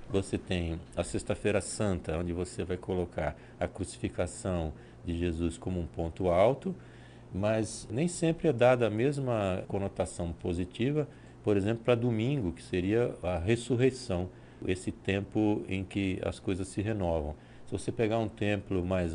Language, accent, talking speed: Portuguese, Brazilian, 150 wpm